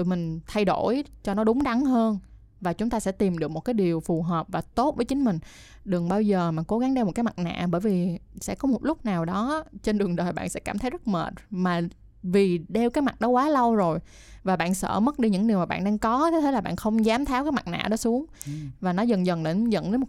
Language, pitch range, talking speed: Vietnamese, 180-235 Hz, 270 wpm